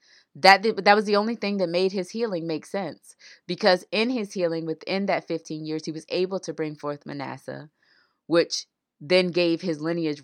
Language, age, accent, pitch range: English, 20-39, American, 155-195 Hz